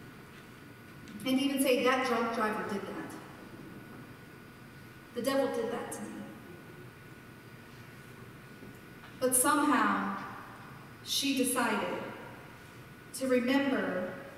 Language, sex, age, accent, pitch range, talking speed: English, female, 40-59, American, 160-255 Hz, 85 wpm